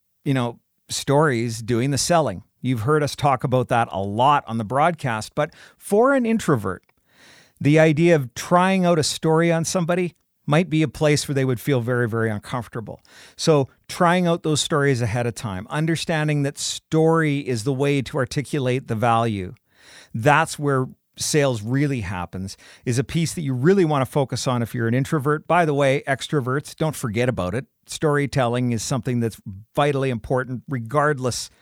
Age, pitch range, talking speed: 50-69, 120-160 Hz, 175 wpm